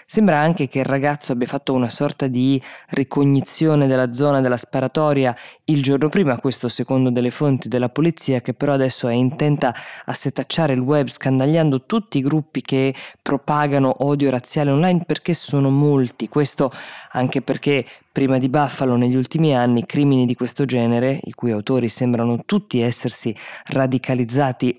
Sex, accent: female, native